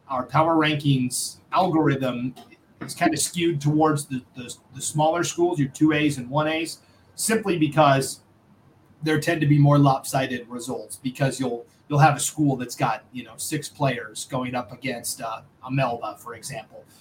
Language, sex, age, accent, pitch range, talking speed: English, male, 30-49, American, 135-160 Hz, 170 wpm